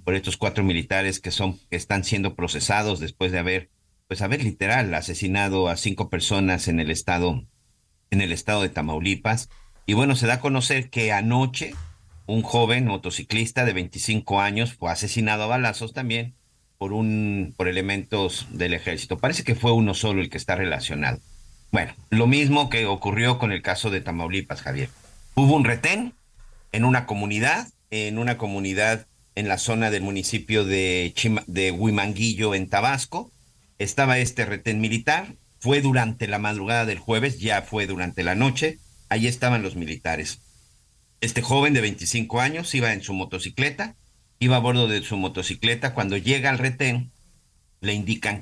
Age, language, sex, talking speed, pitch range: 50-69, Spanish, male, 165 wpm, 95-120 Hz